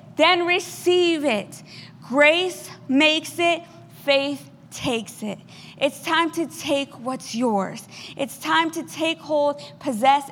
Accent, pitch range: American, 245-315 Hz